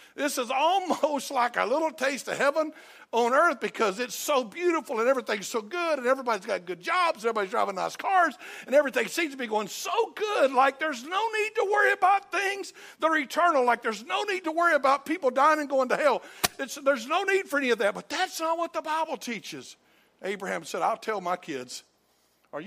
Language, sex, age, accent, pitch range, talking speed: English, male, 60-79, American, 195-310 Hz, 220 wpm